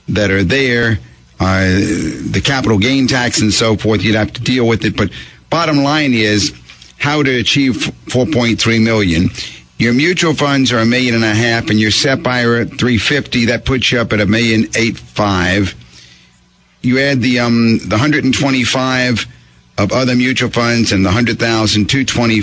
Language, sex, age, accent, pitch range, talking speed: English, male, 50-69, American, 100-135 Hz, 190 wpm